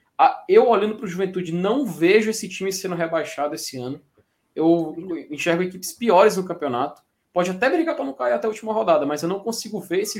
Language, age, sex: Portuguese, 20-39, male